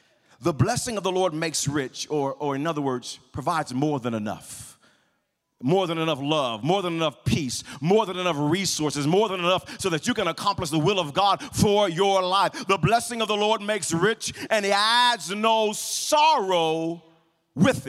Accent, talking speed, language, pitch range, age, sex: American, 190 wpm, English, 130-205 Hz, 40-59, male